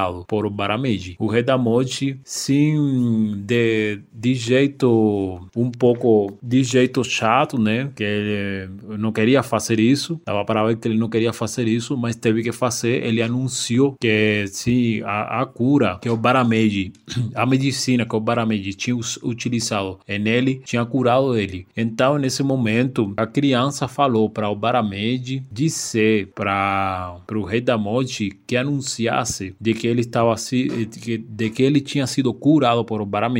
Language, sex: Portuguese, male